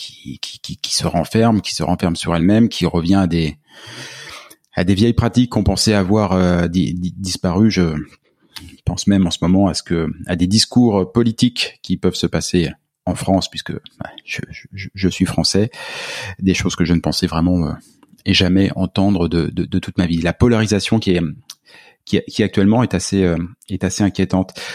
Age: 30-49